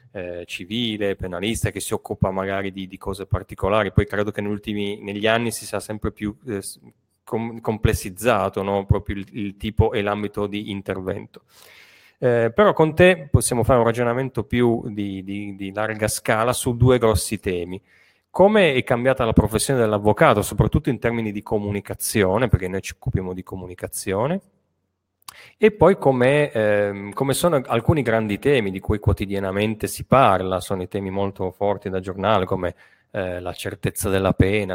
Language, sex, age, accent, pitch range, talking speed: Italian, male, 30-49, native, 95-115 Hz, 155 wpm